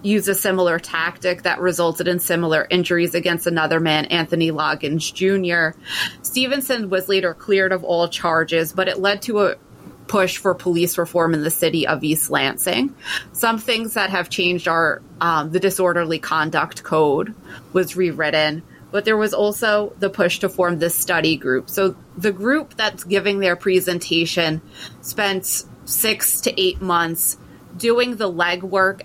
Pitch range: 165-200 Hz